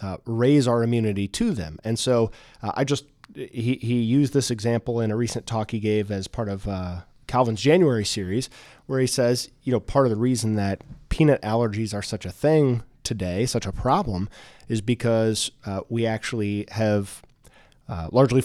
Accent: American